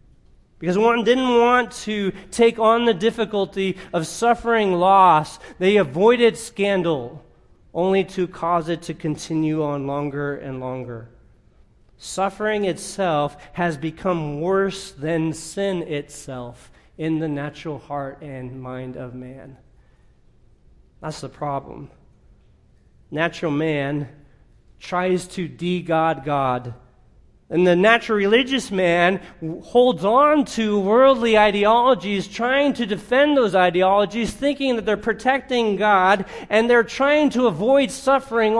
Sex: male